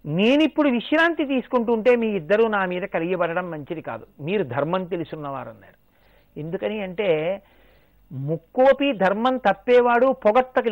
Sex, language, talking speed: male, Telugu, 105 wpm